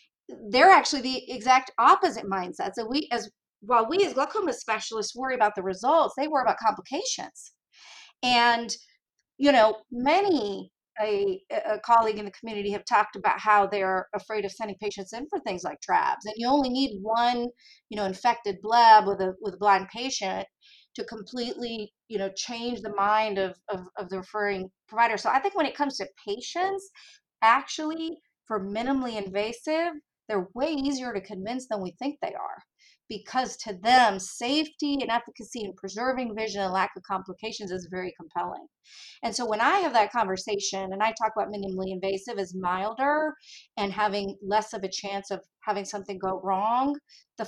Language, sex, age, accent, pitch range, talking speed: English, female, 30-49, American, 200-260 Hz, 175 wpm